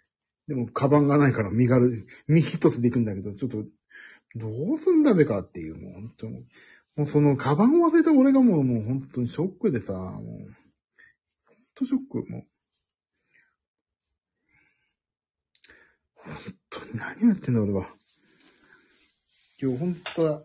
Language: Japanese